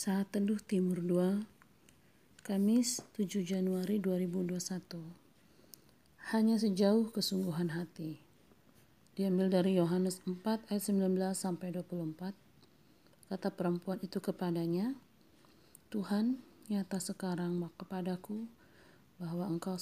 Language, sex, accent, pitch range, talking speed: Indonesian, female, native, 170-195 Hz, 90 wpm